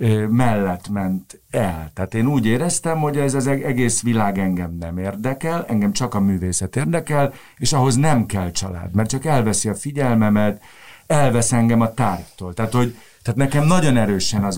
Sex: male